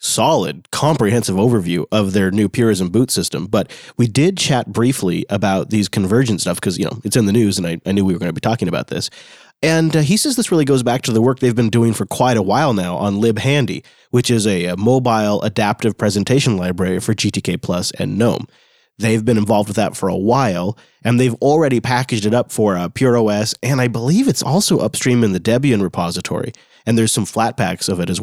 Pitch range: 105-130 Hz